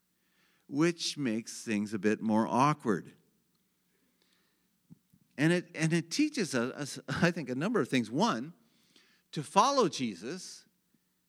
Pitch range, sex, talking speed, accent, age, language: 115-180 Hz, male, 120 wpm, American, 50-69, English